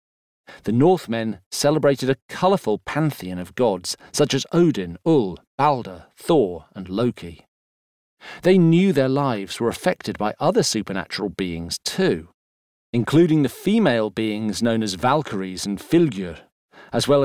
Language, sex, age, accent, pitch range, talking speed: English, male, 40-59, British, 100-145 Hz, 130 wpm